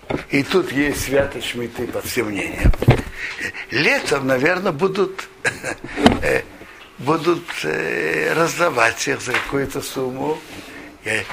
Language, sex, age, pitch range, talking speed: Russian, male, 60-79, 125-165 Hz, 100 wpm